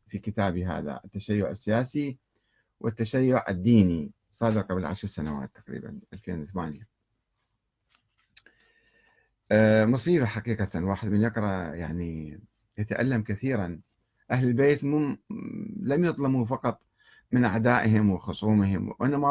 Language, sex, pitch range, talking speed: Arabic, male, 100-140 Hz, 95 wpm